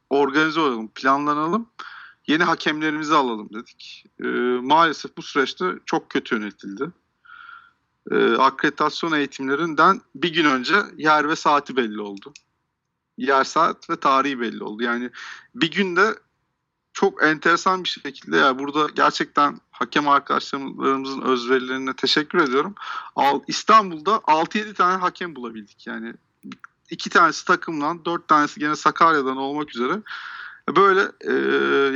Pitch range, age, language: 130-175 Hz, 50-69, Turkish